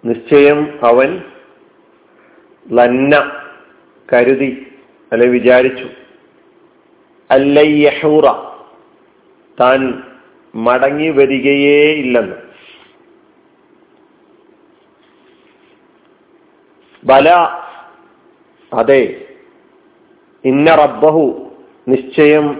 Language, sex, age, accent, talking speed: Malayalam, male, 50-69, native, 35 wpm